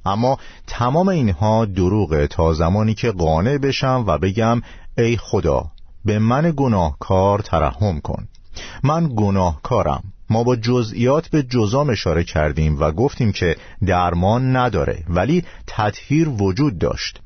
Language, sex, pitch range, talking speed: Persian, male, 90-125 Hz, 125 wpm